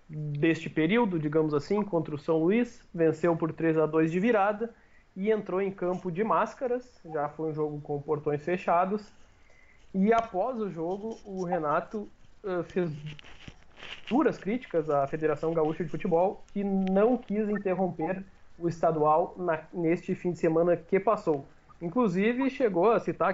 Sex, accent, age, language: male, Brazilian, 20-39, Portuguese